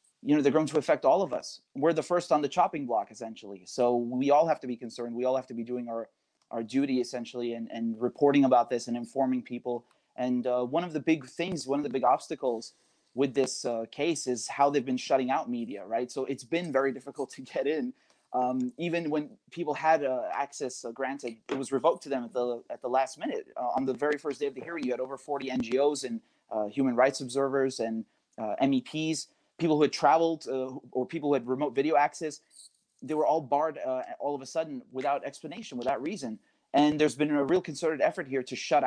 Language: English